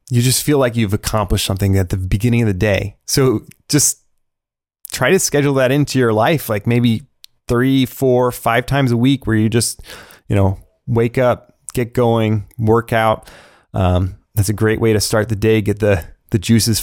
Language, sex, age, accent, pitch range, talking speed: English, male, 30-49, American, 110-135 Hz, 195 wpm